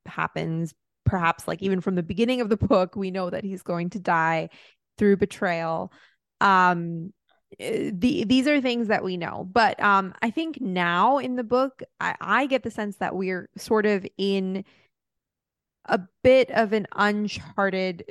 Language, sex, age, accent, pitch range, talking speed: English, female, 20-39, American, 175-215 Hz, 165 wpm